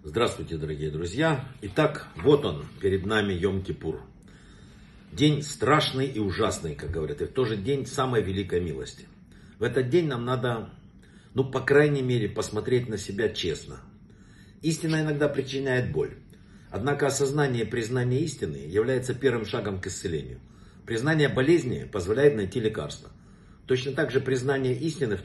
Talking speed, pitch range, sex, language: 145 wpm, 105-140 Hz, male, Russian